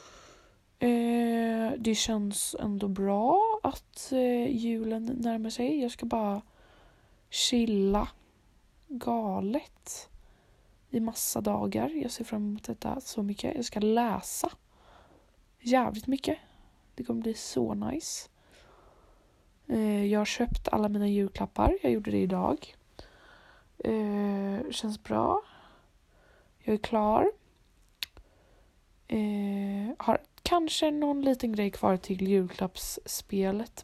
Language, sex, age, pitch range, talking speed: Swedish, female, 20-39, 200-245 Hz, 110 wpm